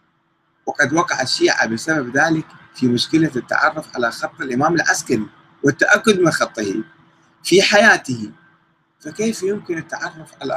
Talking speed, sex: 120 wpm, male